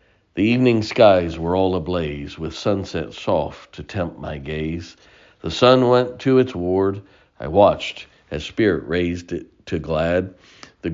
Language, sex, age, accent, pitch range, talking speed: English, male, 50-69, American, 85-115 Hz, 155 wpm